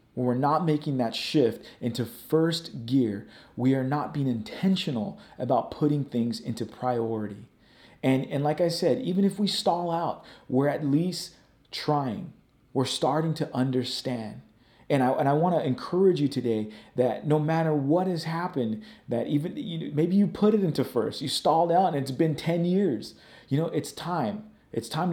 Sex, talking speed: male, 180 wpm